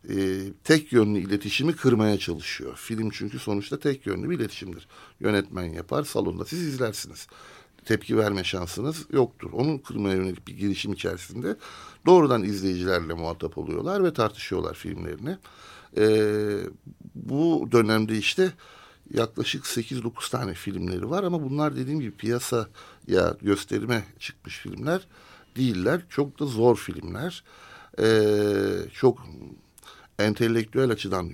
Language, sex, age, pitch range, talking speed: Turkish, male, 60-79, 95-130 Hz, 115 wpm